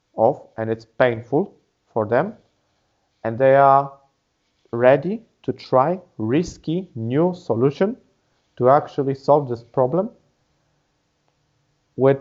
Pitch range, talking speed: 115-145 Hz, 100 wpm